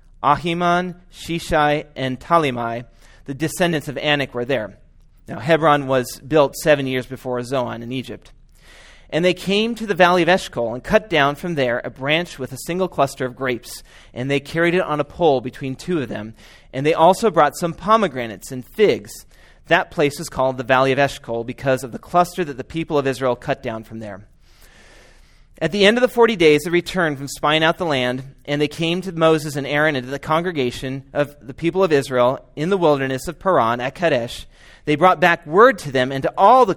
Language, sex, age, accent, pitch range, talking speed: English, male, 30-49, American, 130-175 Hz, 210 wpm